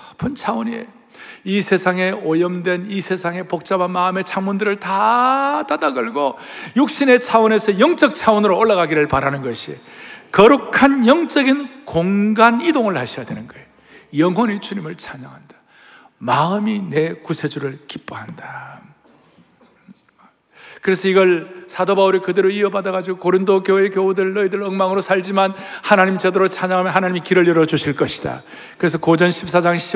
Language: Korean